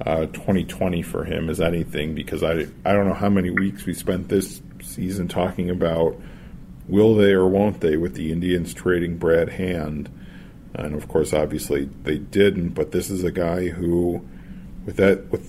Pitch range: 90-100 Hz